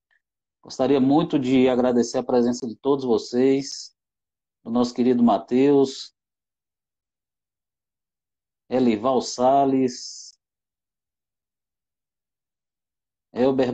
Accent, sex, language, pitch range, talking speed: Brazilian, male, Portuguese, 115-130 Hz, 70 wpm